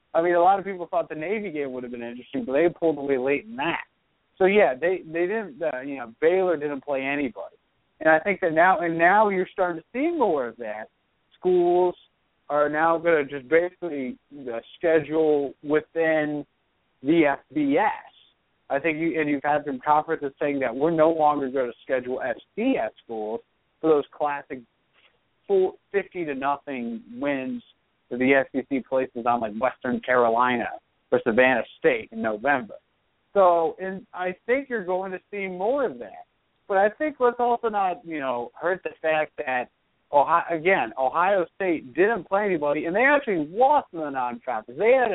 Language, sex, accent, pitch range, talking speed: English, male, American, 145-205 Hz, 180 wpm